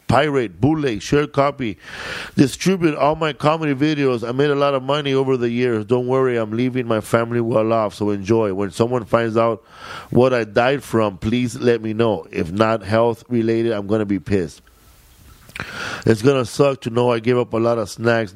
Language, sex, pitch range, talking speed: English, male, 105-125 Hz, 200 wpm